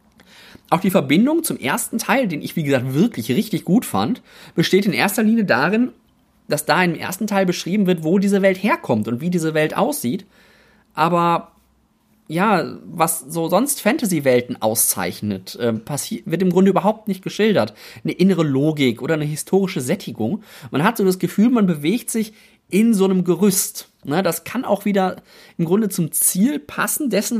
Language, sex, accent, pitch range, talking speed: German, male, German, 155-215 Hz, 170 wpm